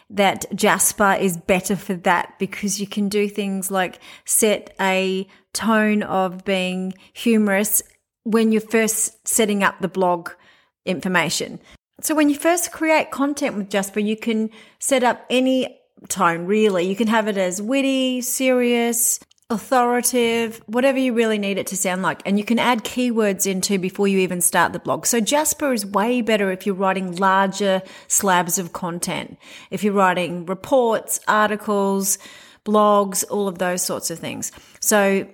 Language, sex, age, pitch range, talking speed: English, female, 30-49, 190-230 Hz, 160 wpm